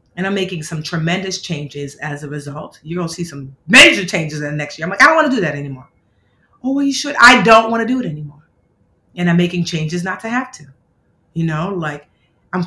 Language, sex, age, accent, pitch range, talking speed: English, female, 30-49, American, 160-220 Hz, 245 wpm